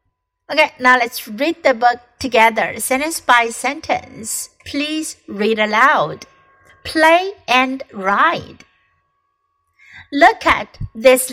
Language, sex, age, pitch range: Chinese, female, 60-79, 225-340 Hz